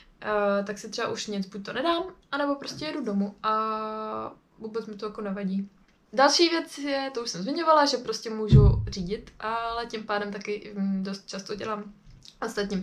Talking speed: 180 wpm